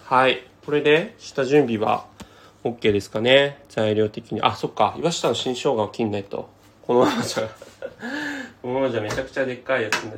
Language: Japanese